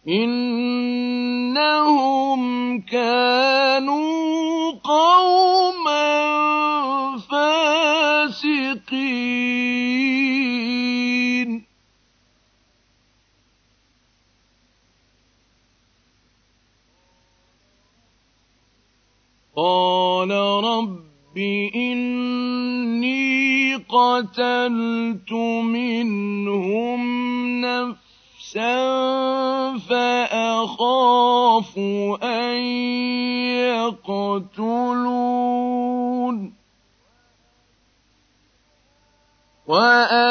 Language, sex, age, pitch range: Arabic, male, 50-69, 205-280 Hz